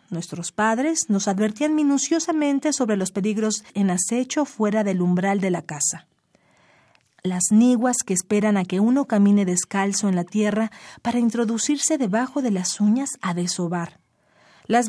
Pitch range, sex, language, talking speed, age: 185-235 Hz, female, Spanish, 150 wpm, 40-59